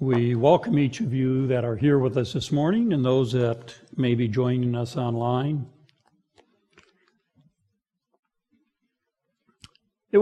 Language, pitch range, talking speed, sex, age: English, 125-160 Hz, 125 wpm, male, 60-79